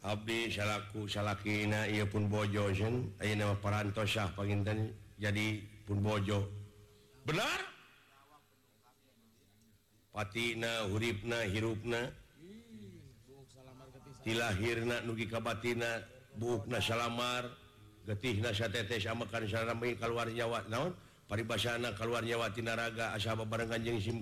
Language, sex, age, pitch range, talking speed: Indonesian, male, 50-69, 105-120 Hz, 95 wpm